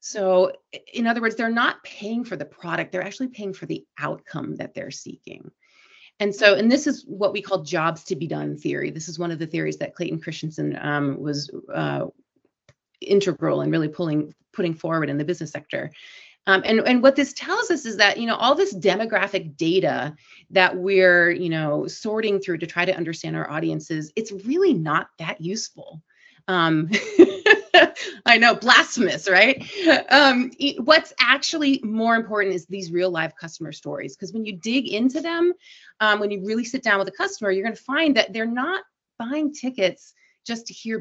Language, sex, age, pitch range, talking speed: English, female, 30-49, 165-240 Hz, 185 wpm